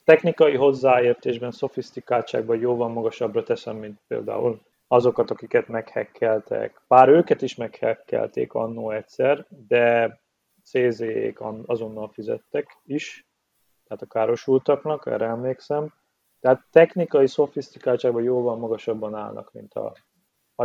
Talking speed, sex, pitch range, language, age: 105 wpm, male, 120-165 Hz, Hungarian, 30-49